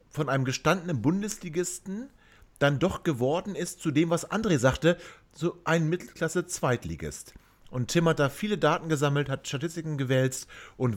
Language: German